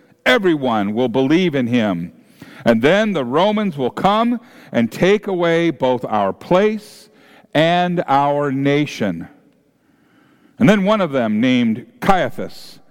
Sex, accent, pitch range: male, American, 125-190 Hz